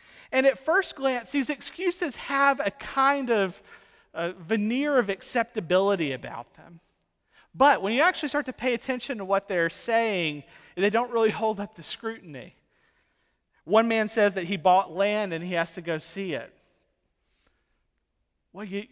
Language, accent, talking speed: English, American, 160 wpm